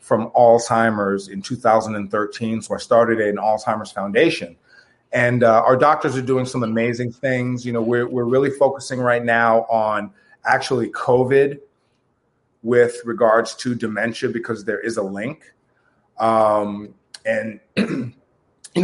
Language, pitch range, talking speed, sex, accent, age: English, 110-125 Hz, 135 wpm, male, American, 30-49